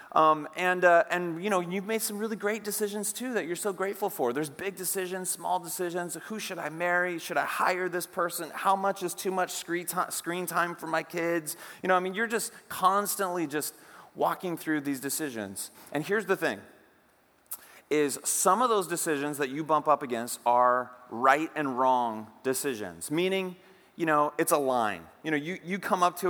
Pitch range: 150-185 Hz